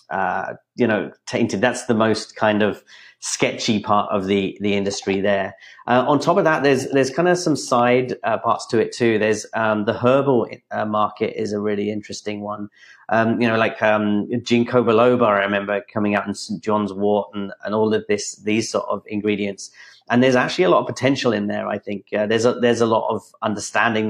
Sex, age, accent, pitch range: male, 30-49, British, 100-115 Hz